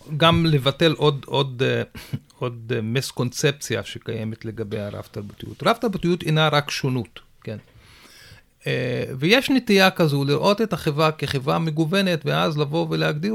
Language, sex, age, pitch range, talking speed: Hebrew, male, 40-59, 120-160 Hz, 125 wpm